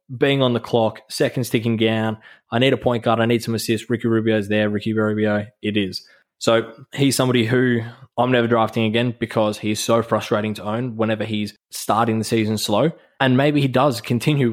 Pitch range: 110-125 Hz